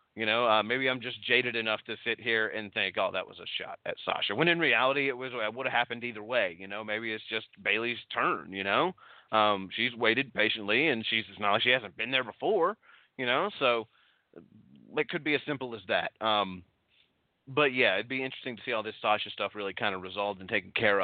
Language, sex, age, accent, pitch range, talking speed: English, male, 30-49, American, 100-130 Hz, 230 wpm